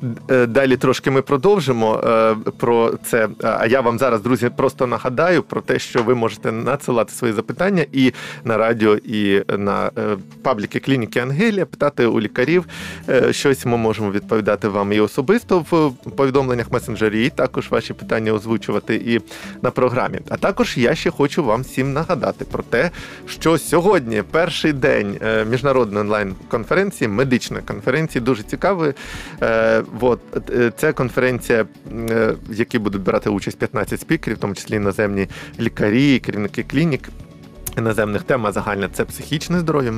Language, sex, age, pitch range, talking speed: Ukrainian, male, 20-39, 110-140 Hz, 140 wpm